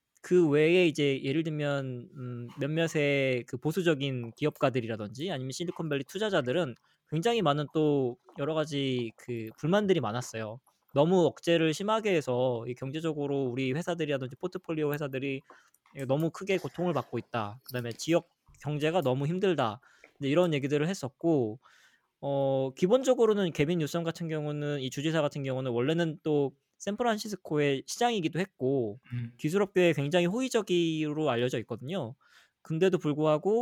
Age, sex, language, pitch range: 20-39, male, Korean, 130-170 Hz